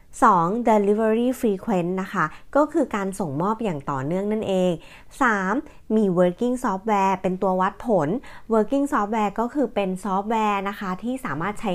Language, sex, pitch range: Thai, female, 180-230 Hz